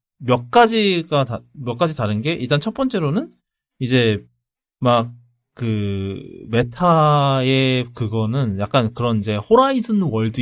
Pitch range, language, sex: 115-155 Hz, Korean, male